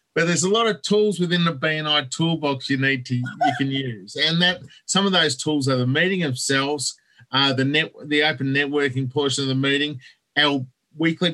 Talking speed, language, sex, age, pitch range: 200 wpm, English, male, 40-59, 135-170 Hz